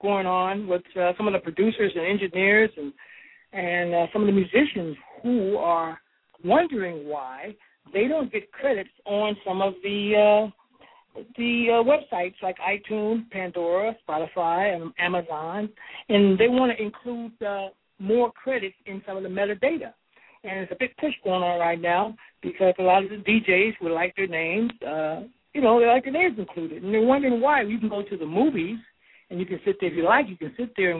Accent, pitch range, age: American, 180-235 Hz, 60-79